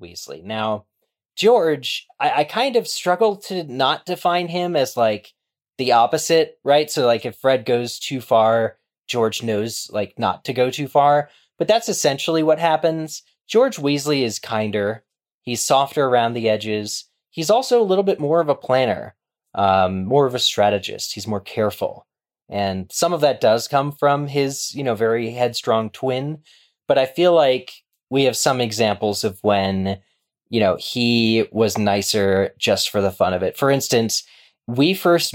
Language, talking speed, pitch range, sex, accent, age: English, 170 wpm, 110-145 Hz, male, American, 20-39